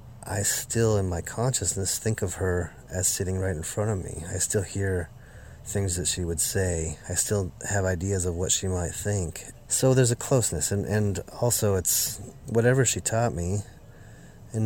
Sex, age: male, 30-49